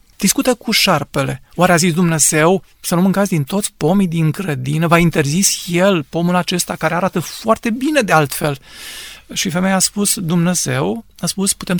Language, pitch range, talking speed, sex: Romanian, 160-205 Hz, 175 wpm, male